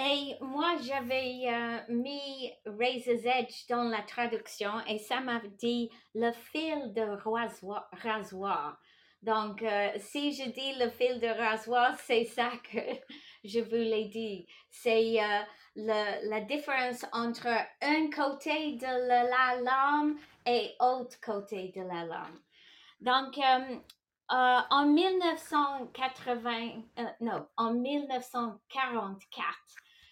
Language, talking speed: English, 120 wpm